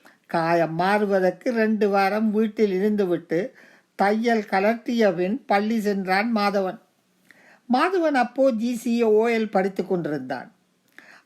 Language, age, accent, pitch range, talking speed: Tamil, 50-69, native, 195-240 Hz, 95 wpm